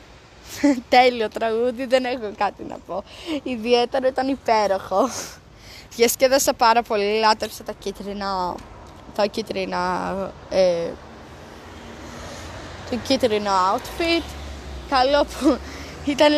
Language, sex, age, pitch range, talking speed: Greek, female, 20-39, 210-285 Hz, 100 wpm